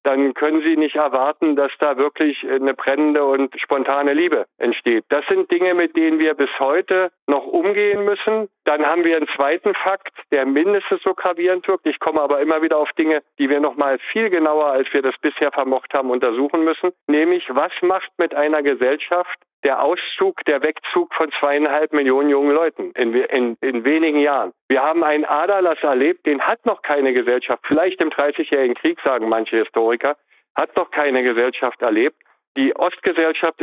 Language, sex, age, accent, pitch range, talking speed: German, male, 50-69, German, 140-180 Hz, 180 wpm